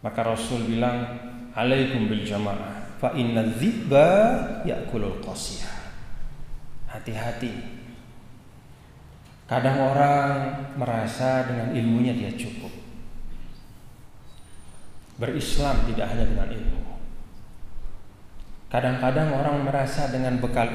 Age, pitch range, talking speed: 40-59, 110-135 Hz, 75 wpm